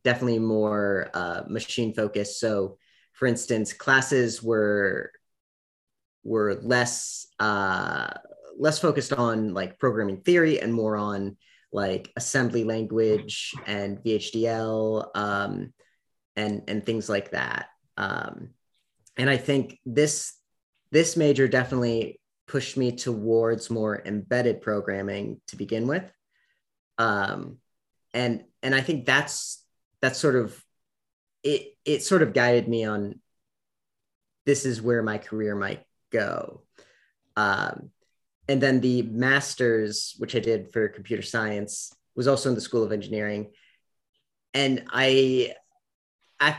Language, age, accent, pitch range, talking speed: English, 30-49, American, 105-130 Hz, 120 wpm